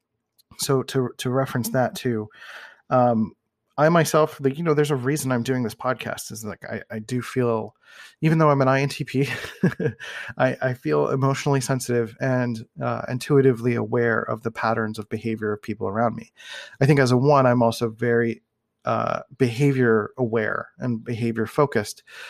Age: 30-49